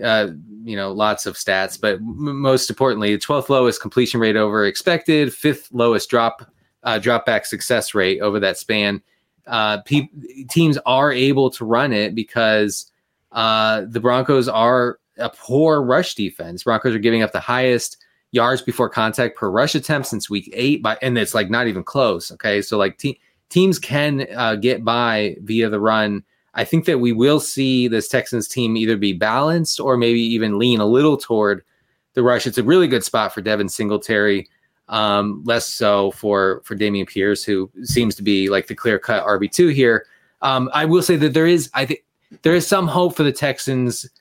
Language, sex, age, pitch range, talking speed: English, male, 20-39, 105-135 Hz, 195 wpm